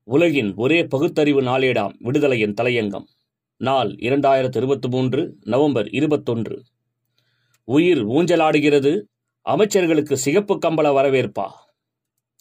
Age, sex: 30-49, male